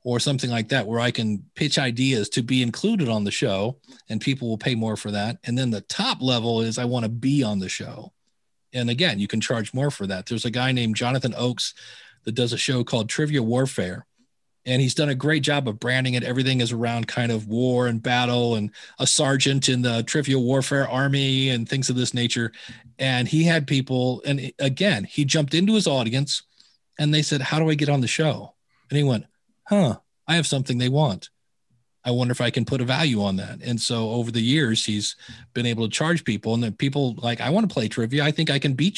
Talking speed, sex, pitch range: 230 wpm, male, 120-145 Hz